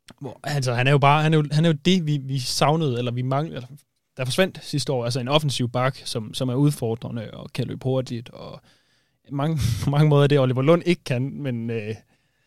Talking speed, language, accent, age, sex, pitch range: 225 wpm, Danish, native, 20-39, male, 120-140 Hz